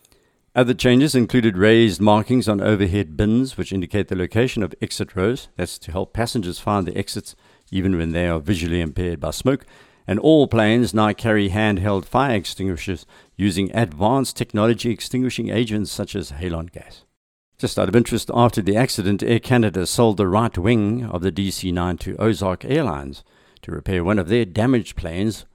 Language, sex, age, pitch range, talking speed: English, male, 60-79, 90-115 Hz, 170 wpm